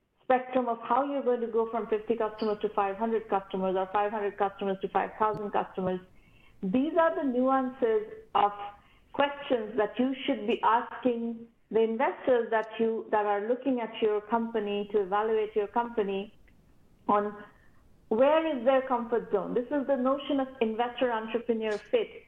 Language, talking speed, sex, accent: English, 155 wpm, female, Indian